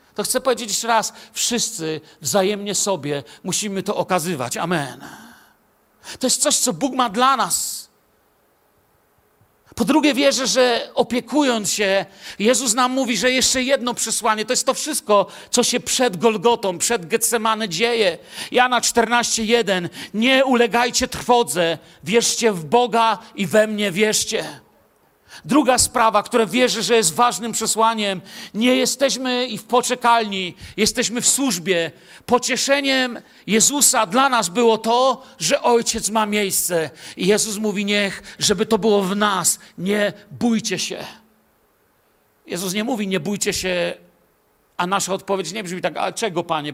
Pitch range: 195-245 Hz